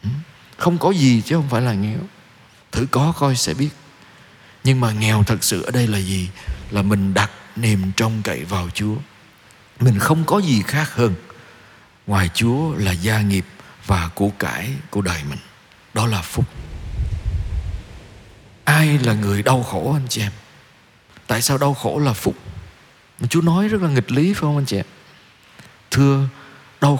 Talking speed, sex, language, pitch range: 170 wpm, male, Vietnamese, 100-140 Hz